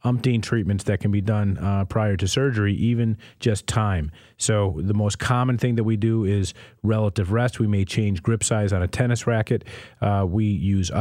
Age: 40-59